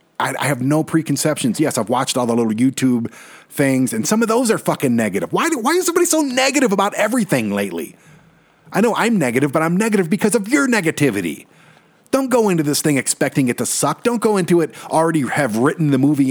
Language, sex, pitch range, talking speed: English, male, 150-225 Hz, 210 wpm